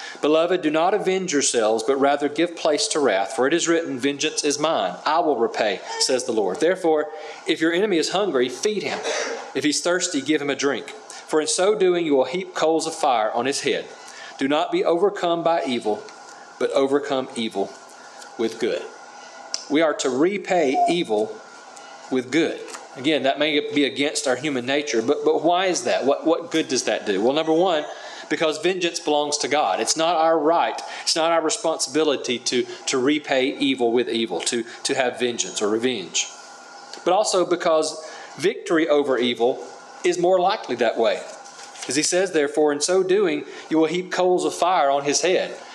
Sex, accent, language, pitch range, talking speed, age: male, American, English, 140-180 Hz, 190 wpm, 40-59